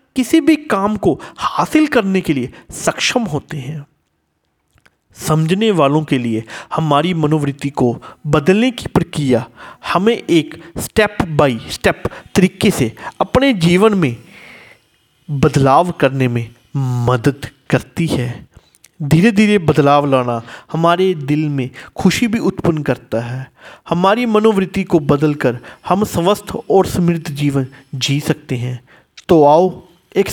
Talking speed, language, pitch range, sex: 125 wpm, Hindi, 135-190 Hz, male